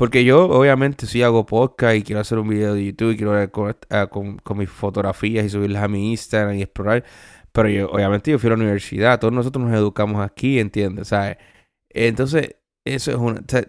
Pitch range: 105-135 Hz